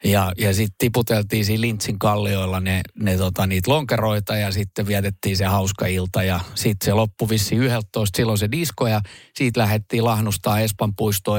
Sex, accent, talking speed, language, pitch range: male, native, 175 wpm, Finnish, 95-110 Hz